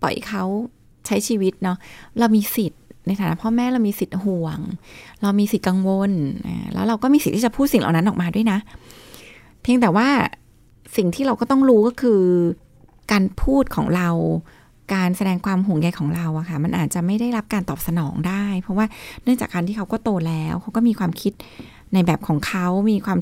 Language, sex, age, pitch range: Thai, female, 20-39, 175-225 Hz